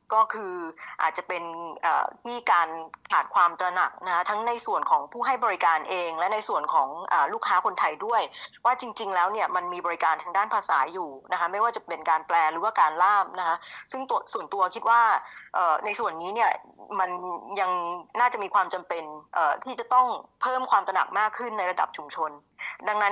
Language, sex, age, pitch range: Thai, female, 20-39, 175-235 Hz